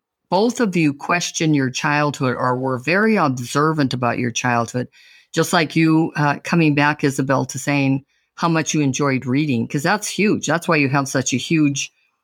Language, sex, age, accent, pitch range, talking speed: English, female, 50-69, American, 135-185 Hz, 180 wpm